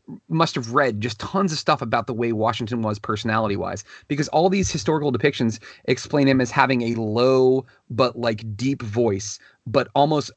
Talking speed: 175 wpm